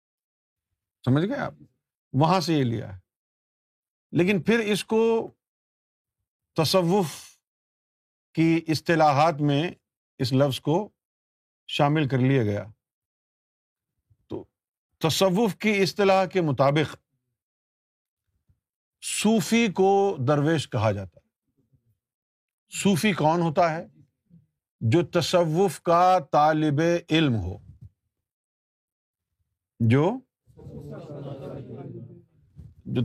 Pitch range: 120-175 Hz